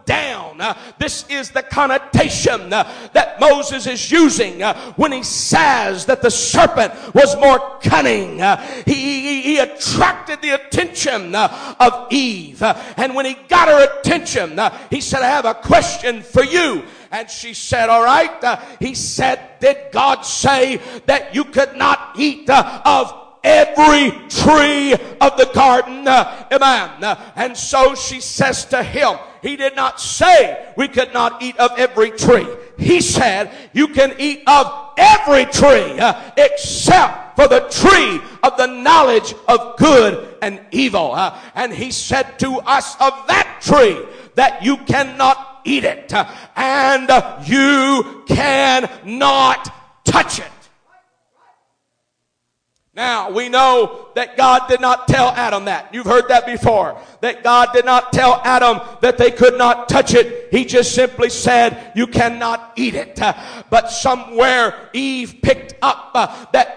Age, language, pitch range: 50-69, English, 245-280 Hz